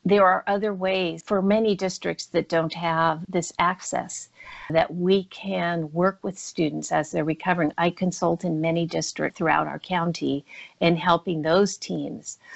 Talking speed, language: 160 wpm, English